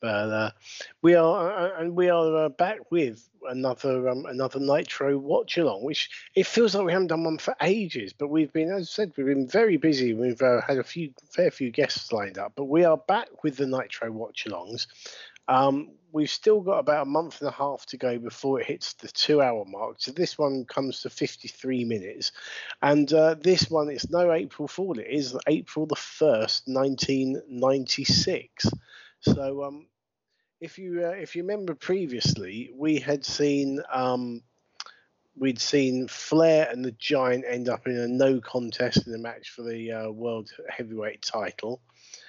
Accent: British